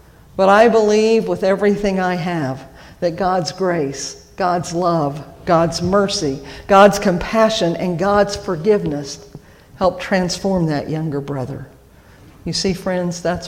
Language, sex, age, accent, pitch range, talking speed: English, female, 50-69, American, 165-205 Hz, 125 wpm